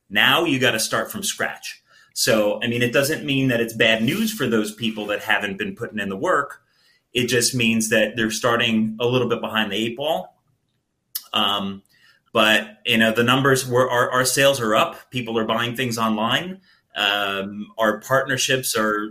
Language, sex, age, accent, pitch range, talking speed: English, male, 30-49, American, 110-130 Hz, 185 wpm